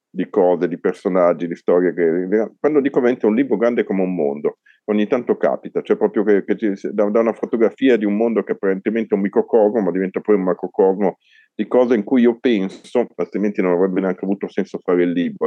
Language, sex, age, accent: Italian, male, 40-59, native